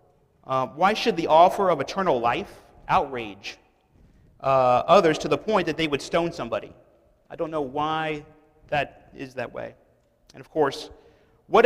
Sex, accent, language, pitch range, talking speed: male, American, English, 125-170 Hz, 160 wpm